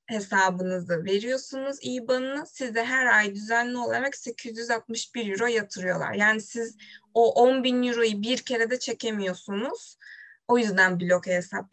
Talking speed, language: 125 wpm, Turkish